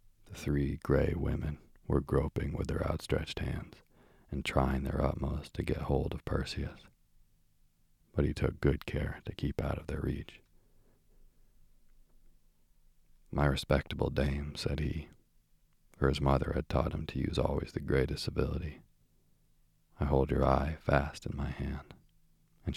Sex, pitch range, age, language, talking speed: male, 70-80 Hz, 40-59, English, 150 wpm